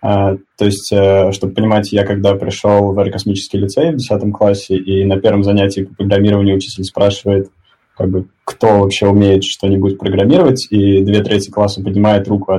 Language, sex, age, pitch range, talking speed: Russian, male, 20-39, 95-105 Hz, 165 wpm